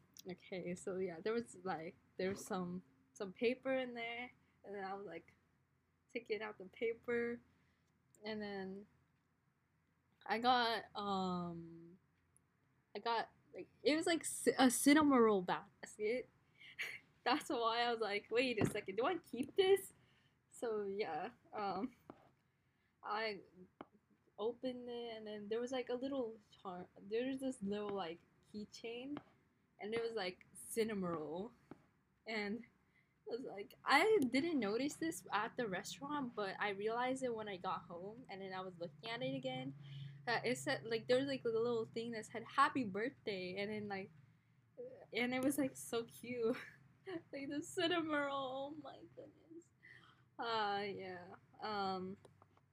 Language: English